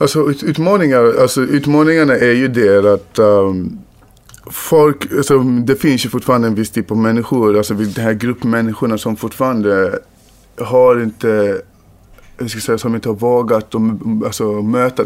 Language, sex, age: English, male, 20-39